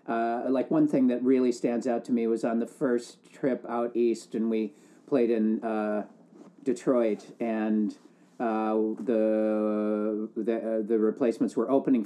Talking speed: 160 wpm